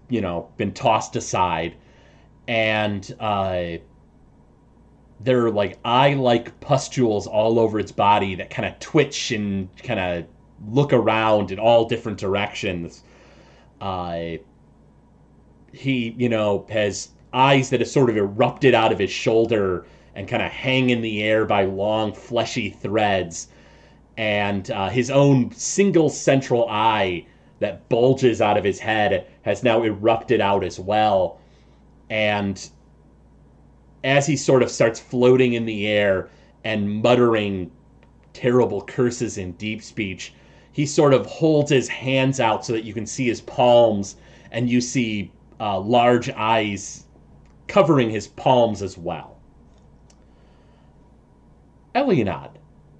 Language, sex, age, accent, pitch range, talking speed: English, male, 30-49, American, 95-125 Hz, 130 wpm